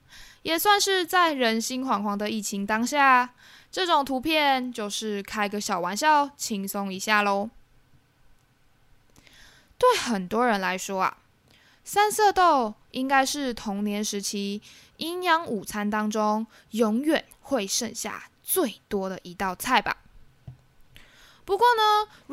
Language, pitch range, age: Chinese, 210-300 Hz, 10-29